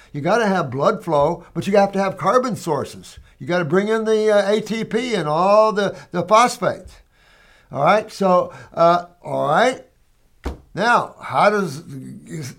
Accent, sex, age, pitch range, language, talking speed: American, male, 60-79, 160-205 Hz, English, 165 wpm